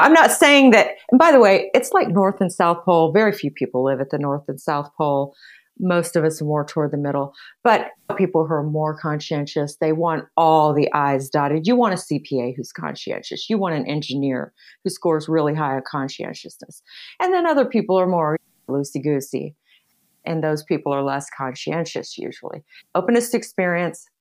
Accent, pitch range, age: American, 150-215 Hz, 40-59